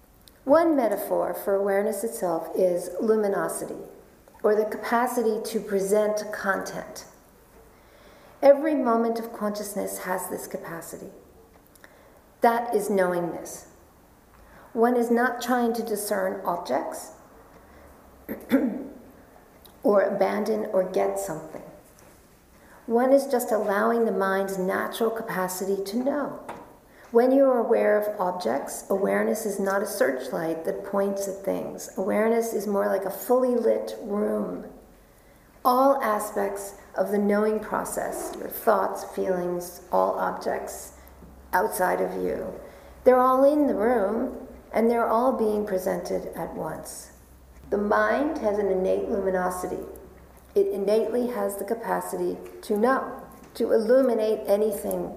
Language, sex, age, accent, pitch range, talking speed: English, female, 50-69, American, 190-235 Hz, 120 wpm